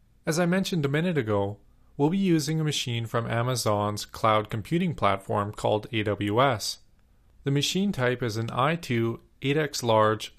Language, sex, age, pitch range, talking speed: English, male, 40-59, 110-145 Hz, 160 wpm